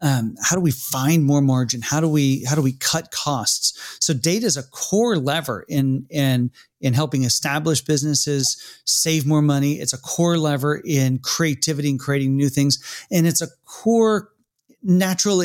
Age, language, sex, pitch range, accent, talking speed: 40-59, English, male, 130-155 Hz, American, 175 wpm